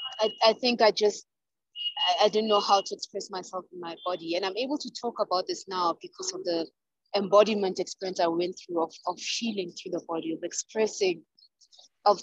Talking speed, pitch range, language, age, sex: 195 wpm, 175-230 Hz, English, 20-39, female